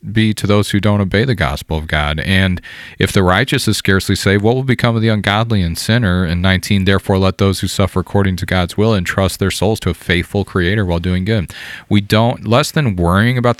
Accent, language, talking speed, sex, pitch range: American, English, 230 wpm, male, 95-115 Hz